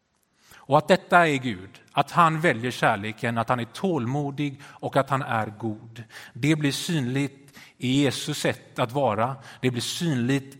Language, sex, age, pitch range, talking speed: Swedish, male, 30-49, 130-180 Hz, 165 wpm